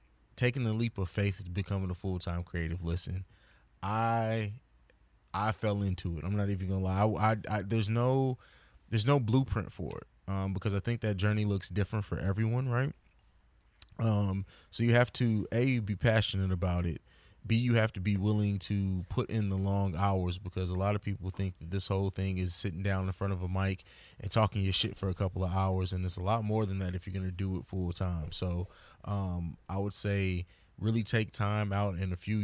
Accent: American